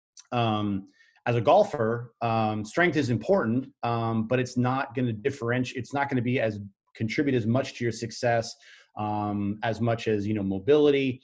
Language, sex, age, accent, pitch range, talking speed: English, male, 30-49, American, 110-130 Hz, 180 wpm